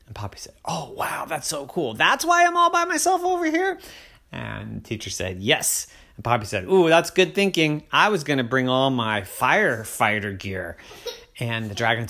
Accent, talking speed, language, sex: American, 200 wpm, English, male